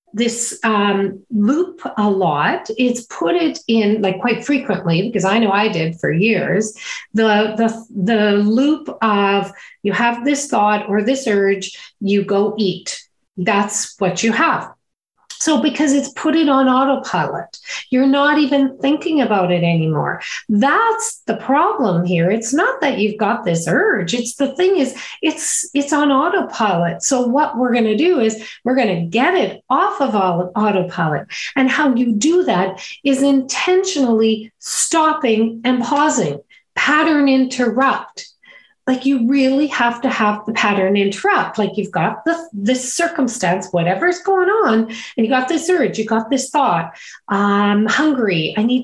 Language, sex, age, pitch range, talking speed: English, female, 40-59, 210-290 Hz, 155 wpm